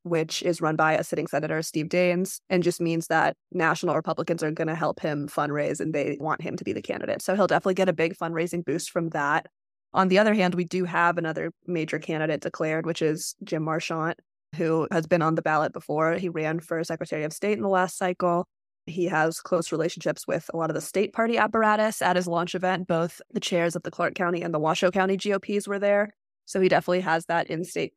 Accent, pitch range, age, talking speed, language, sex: American, 165-190 Hz, 20-39, 225 wpm, English, female